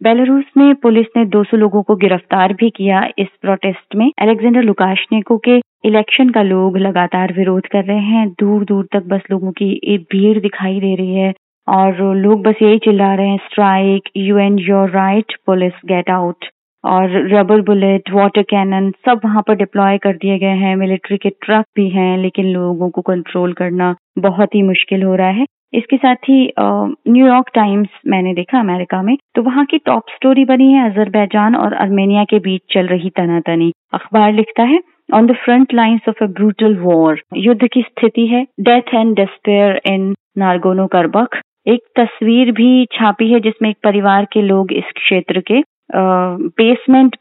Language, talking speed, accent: Hindi, 180 wpm, native